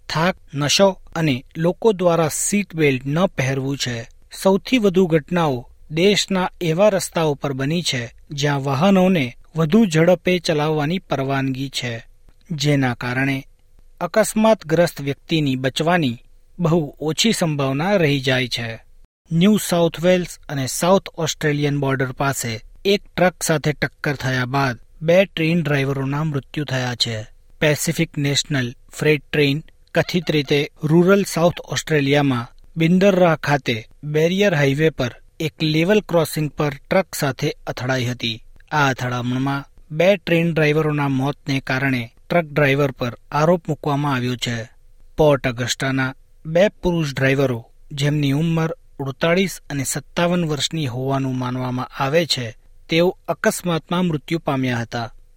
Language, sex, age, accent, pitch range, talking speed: Gujarati, male, 40-59, native, 135-170 Hz, 120 wpm